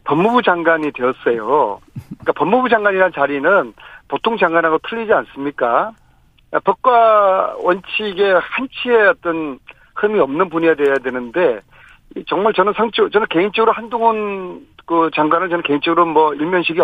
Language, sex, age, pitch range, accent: Korean, male, 40-59, 160-230 Hz, native